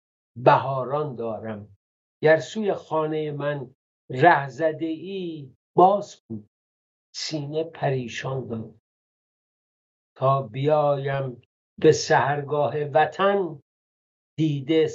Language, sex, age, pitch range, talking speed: English, male, 50-69, 120-155 Hz, 70 wpm